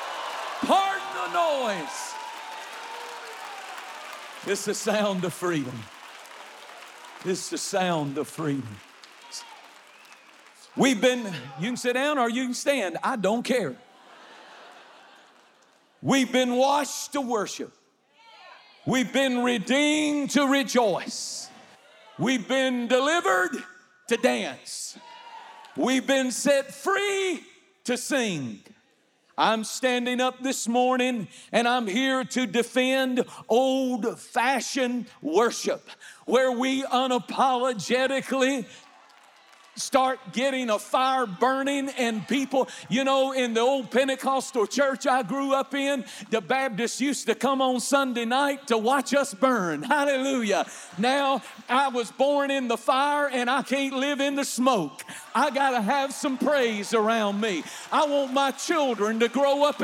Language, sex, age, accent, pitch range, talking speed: English, male, 50-69, American, 235-280 Hz, 120 wpm